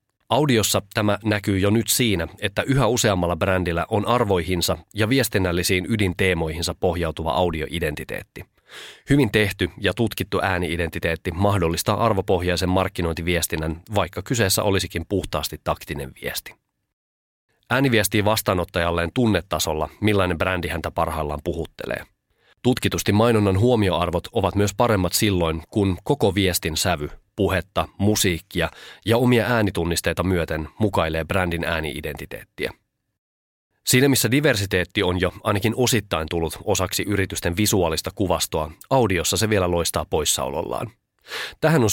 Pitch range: 85-105 Hz